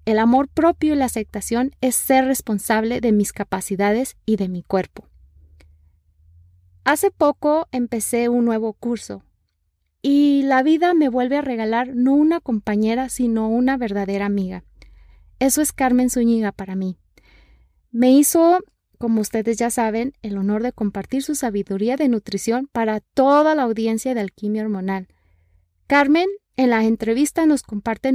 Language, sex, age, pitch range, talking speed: Spanish, female, 30-49, 205-265 Hz, 145 wpm